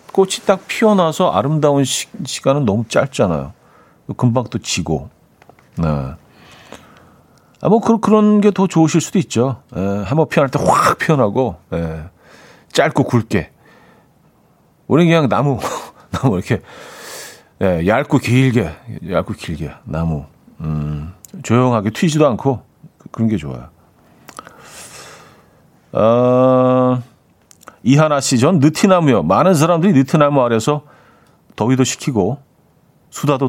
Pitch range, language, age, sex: 105-155 Hz, Korean, 40-59, male